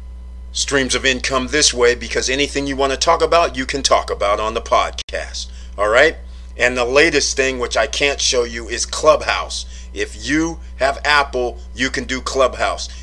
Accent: American